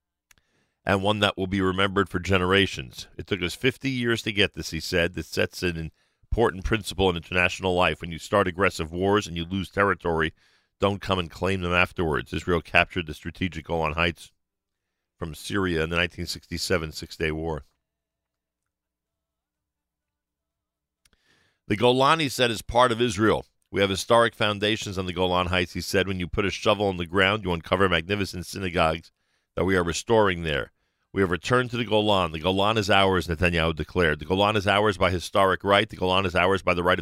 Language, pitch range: English, 85-100 Hz